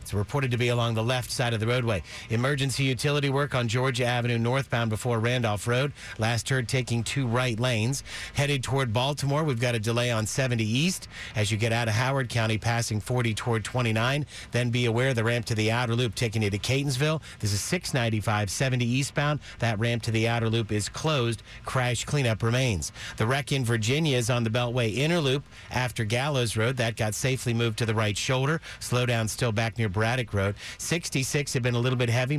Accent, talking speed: American, 205 wpm